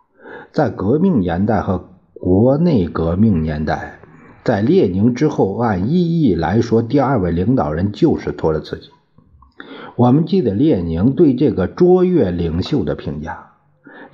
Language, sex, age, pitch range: Chinese, male, 50-69, 85-120 Hz